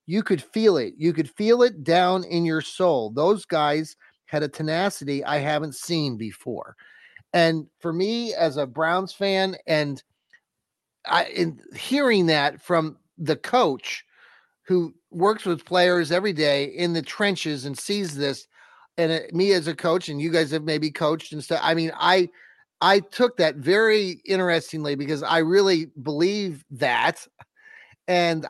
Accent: American